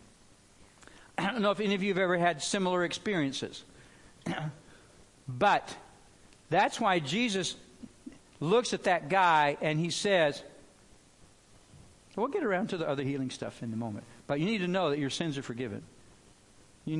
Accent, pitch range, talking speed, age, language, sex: American, 125-160 Hz, 160 wpm, 60-79, English, male